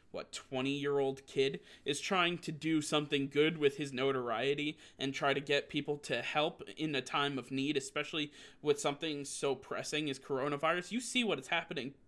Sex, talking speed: male, 180 wpm